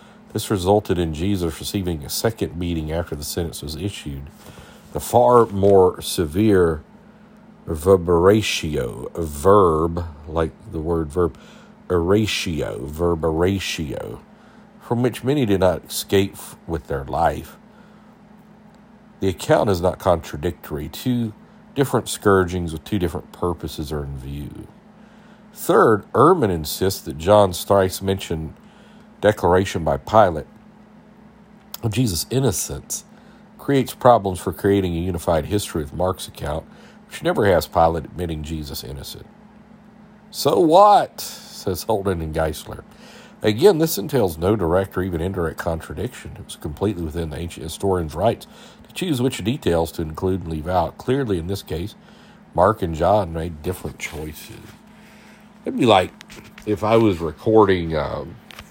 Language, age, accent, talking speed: English, 50-69, American, 135 wpm